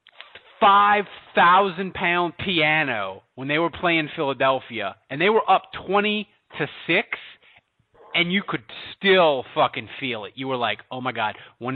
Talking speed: 150 wpm